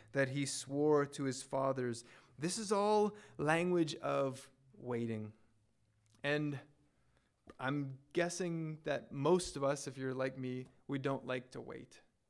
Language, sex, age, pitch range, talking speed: English, male, 20-39, 125-150 Hz, 135 wpm